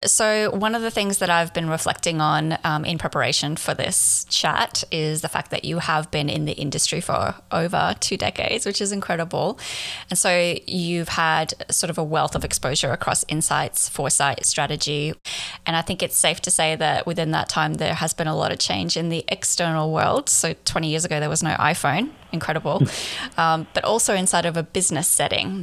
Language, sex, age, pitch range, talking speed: English, female, 20-39, 155-180 Hz, 200 wpm